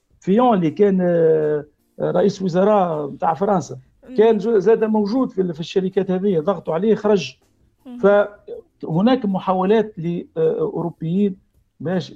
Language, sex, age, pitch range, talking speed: Arabic, male, 50-69, 165-225 Hz, 105 wpm